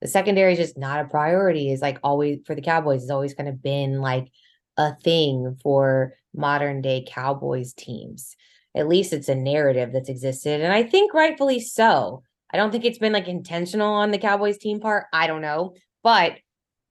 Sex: female